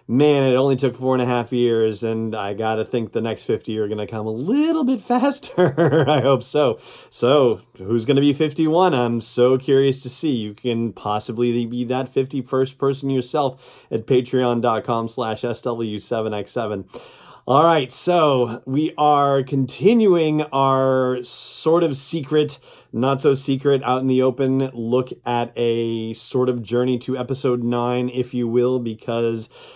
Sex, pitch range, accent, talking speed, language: male, 115-135 Hz, American, 155 wpm, English